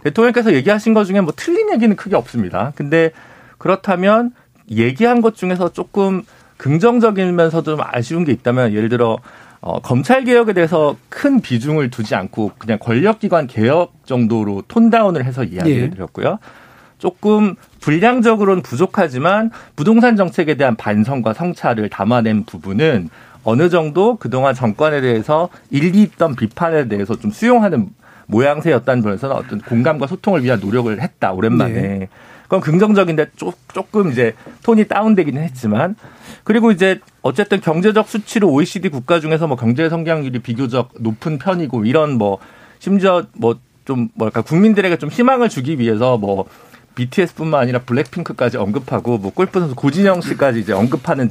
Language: Korean